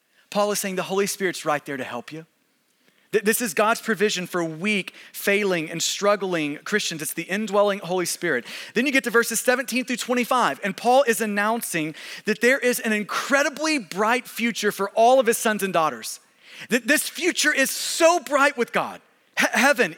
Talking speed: 185 wpm